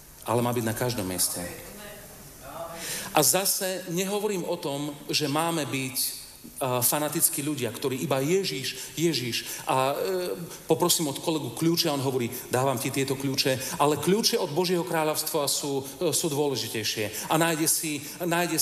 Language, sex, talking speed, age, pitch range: Slovak, male, 145 wpm, 40-59, 115-160 Hz